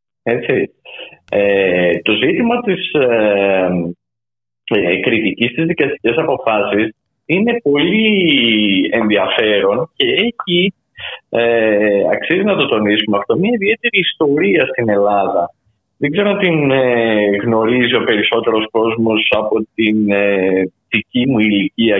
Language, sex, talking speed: Greek, male, 110 wpm